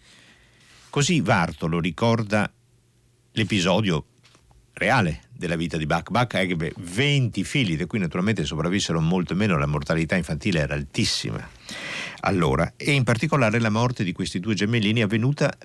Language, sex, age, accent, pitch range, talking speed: Italian, male, 50-69, native, 80-120 Hz, 135 wpm